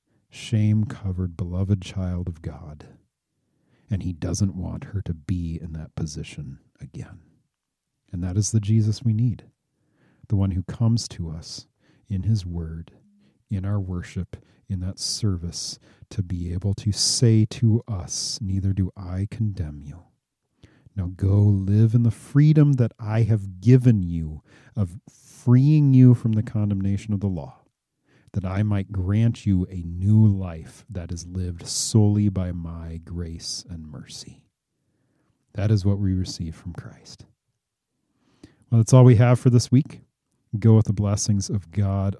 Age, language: 40-59, English